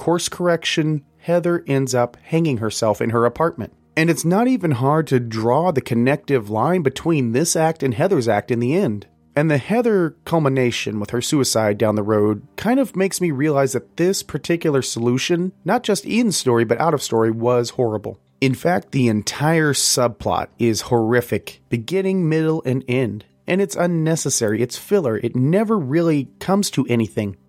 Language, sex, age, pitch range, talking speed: English, male, 30-49, 120-170 Hz, 175 wpm